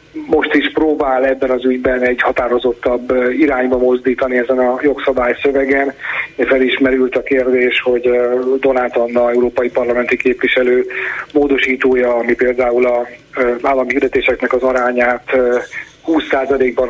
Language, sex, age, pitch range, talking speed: Hungarian, male, 30-49, 125-140 Hz, 115 wpm